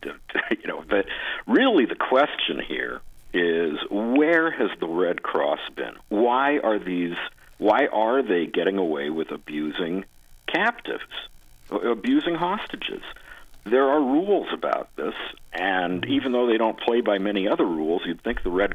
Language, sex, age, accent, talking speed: English, male, 50-69, American, 145 wpm